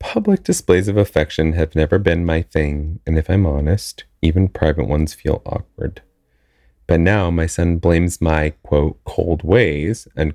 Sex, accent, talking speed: male, American, 160 wpm